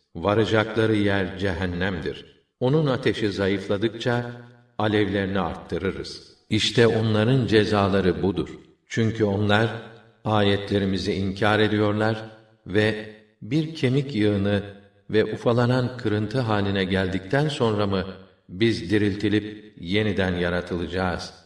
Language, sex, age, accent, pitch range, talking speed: Turkish, male, 50-69, native, 95-110 Hz, 90 wpm